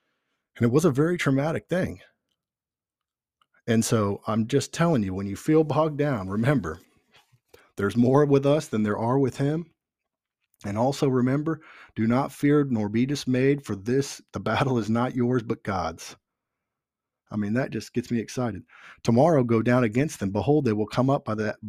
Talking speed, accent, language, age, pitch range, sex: 180 wpm, American, English, 40-59, 110-135 Hz, male